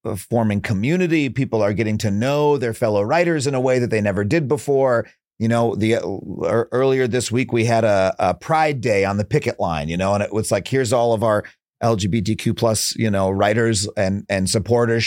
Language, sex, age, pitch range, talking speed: English, male, 40-59, 110-145 Hz, 210 wpm